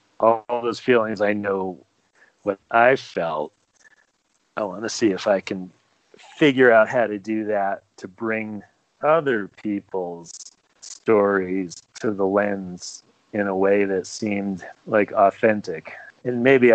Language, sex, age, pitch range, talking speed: English, male, 40-59, 100-115 Hz, 135 wpm